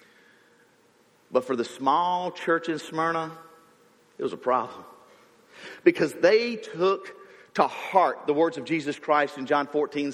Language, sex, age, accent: English, male, 50-69, American